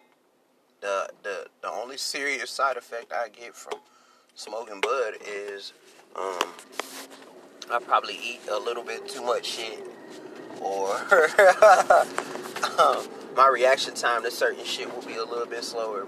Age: 30-49